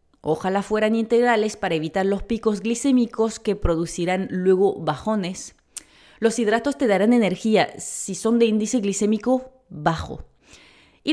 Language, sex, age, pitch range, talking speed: Spanish, female, 30-49, 175-235 Hz, 130 wpm